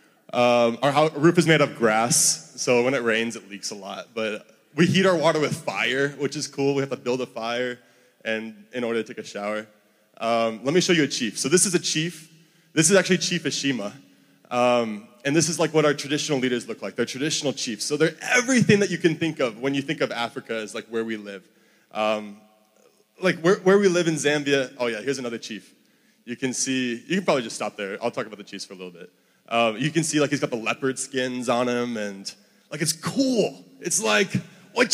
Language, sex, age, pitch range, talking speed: English, male, 20-39, 115-160 Hz, 235 wpm